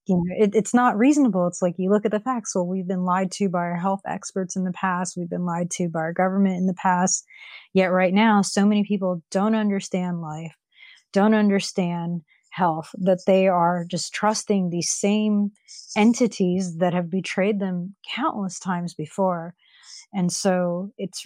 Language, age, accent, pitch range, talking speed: English, 30-49, American, 175-205 Hz, 175 wpm